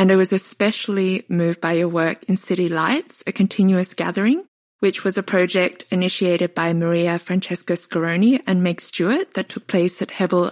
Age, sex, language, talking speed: 20-39, female, English, 175 wpm